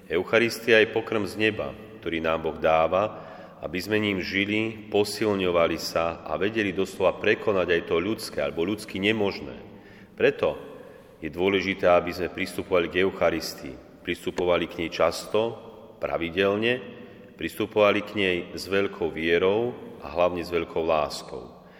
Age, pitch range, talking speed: 40-59, 90-105 Hz, 135 wpm